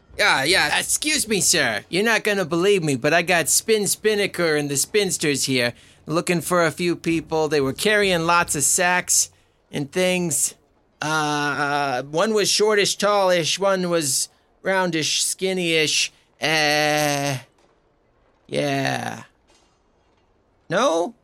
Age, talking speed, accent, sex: 30-49, 135 wpm, American, male